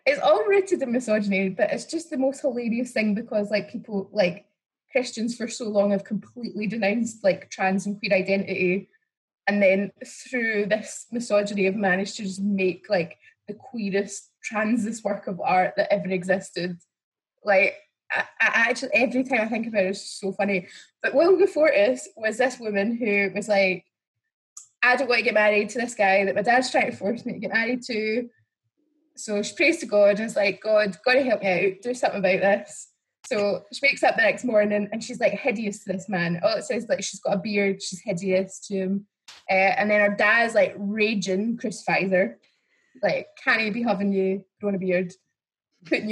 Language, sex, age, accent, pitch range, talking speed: English, female, 20-39, British, 200-265 Hz, 200 wpm